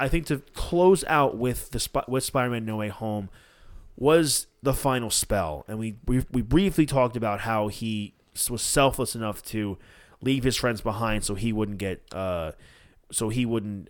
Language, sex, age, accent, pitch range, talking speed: English, male, 20-39, American, 105-135 Hz, 180 wpm